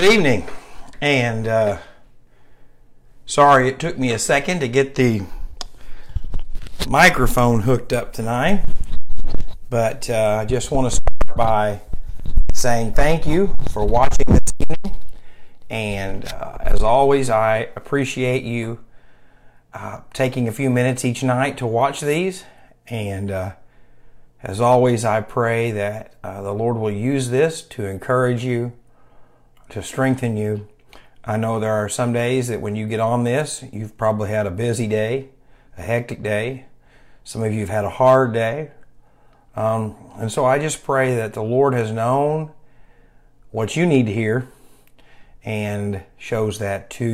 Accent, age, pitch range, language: American, 50-69, 110-130 Hz, English